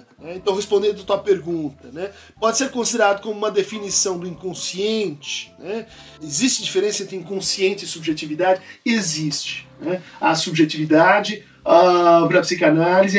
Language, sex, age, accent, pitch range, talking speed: Portuguese, male, 50-69, Brazilian, 175-210 Hz, 130 wpm